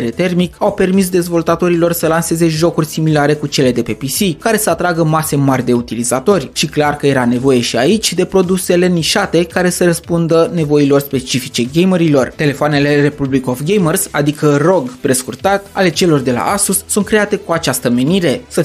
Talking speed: 175 wpm